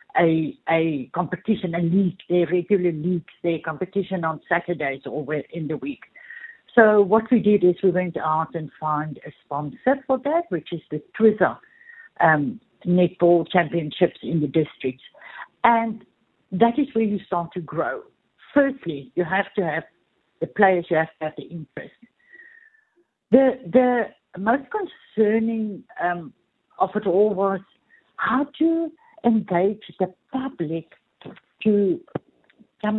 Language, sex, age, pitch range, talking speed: English, female, 60-79, 165-230 Hz, 140 wpm